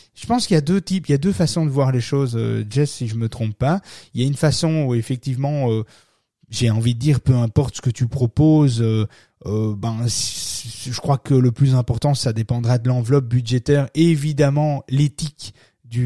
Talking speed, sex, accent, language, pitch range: 205 wpm, male, French, French, 120-155 Hz